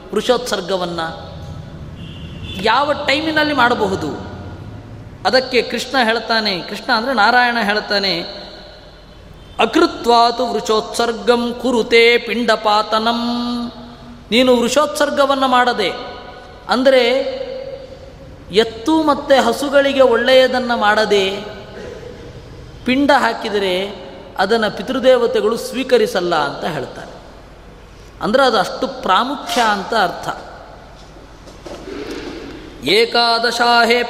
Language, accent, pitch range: Kannada, native, 210-260 Hz